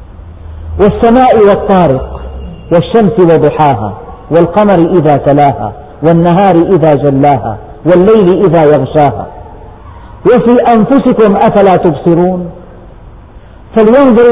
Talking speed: 75 wpm